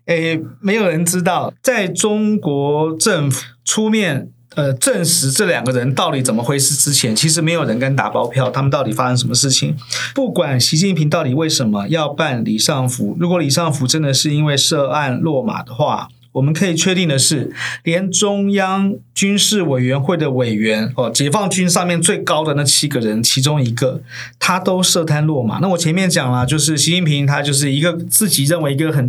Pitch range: 130-180 Hz